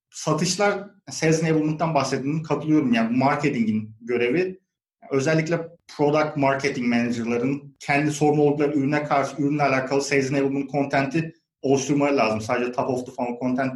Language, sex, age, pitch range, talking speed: Turkish, male, 30-49, 125-150 Hz, 125 wpm